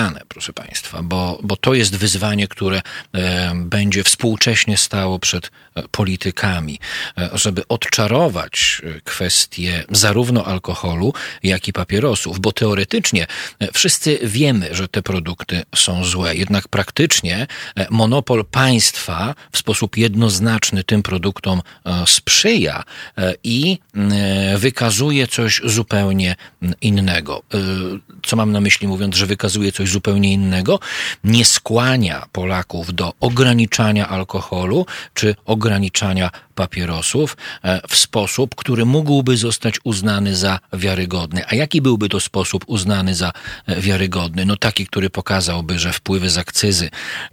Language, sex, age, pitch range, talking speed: Polish, male, 40-59, 95-110 Hz, 110 wpm